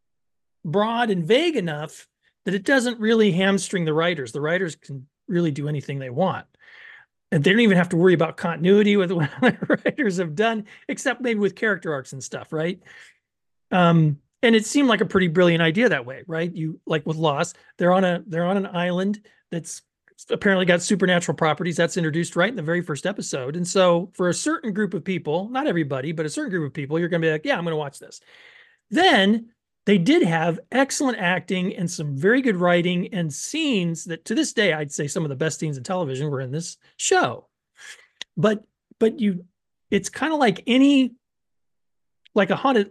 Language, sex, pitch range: English, male, 165-220 Hz